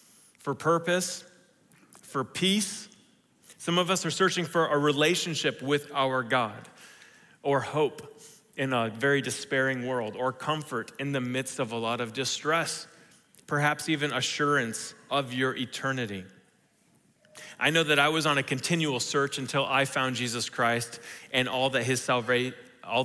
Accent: American